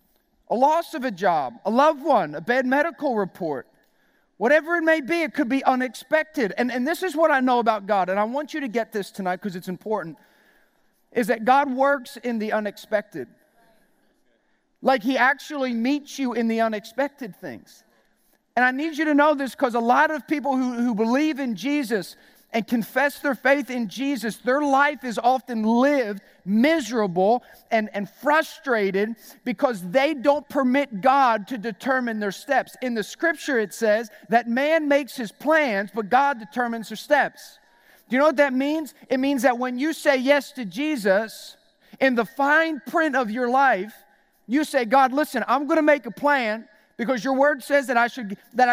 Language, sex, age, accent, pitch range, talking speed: English, male, 40-59, American, 225-285 Hz, 185 wpm